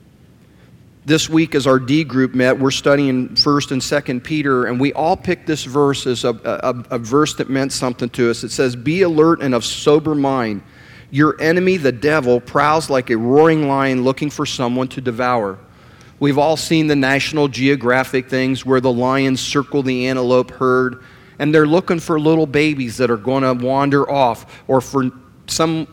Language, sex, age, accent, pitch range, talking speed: English, male, 40-59, American, 125-155 Hz, 185 wpm